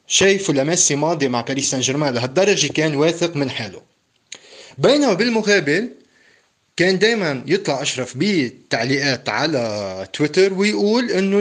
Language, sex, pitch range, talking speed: Arabic, male, 135-195 Hz, 115 wpm